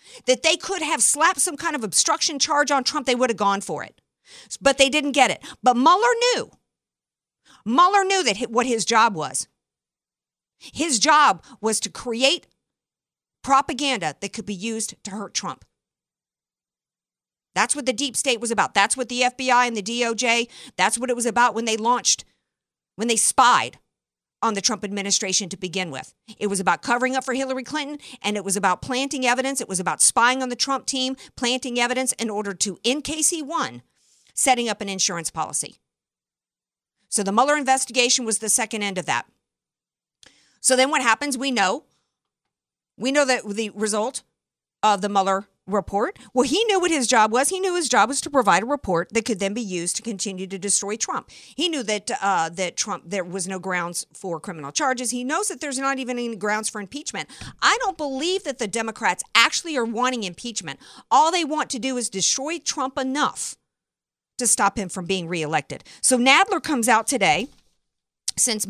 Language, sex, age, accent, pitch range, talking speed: English, female, 50-69, American, 205-270 Hz, 190 wpm